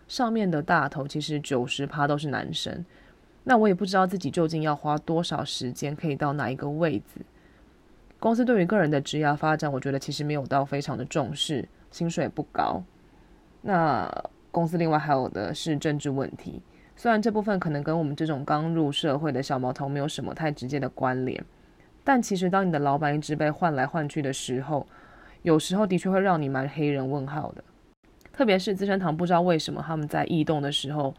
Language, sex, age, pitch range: Chinese, female, 20-39, 145-175 Hz